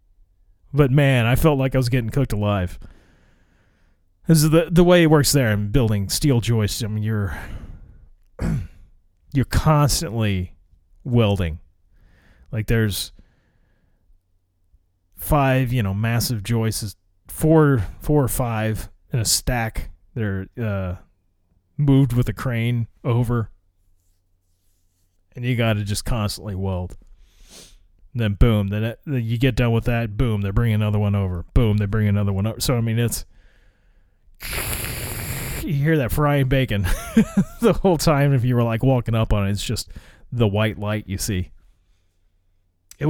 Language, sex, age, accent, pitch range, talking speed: English, male, 30-49, American, 90-135 Hz, 145 wpm